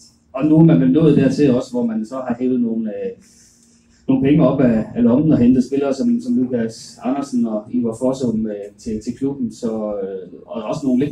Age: 30-49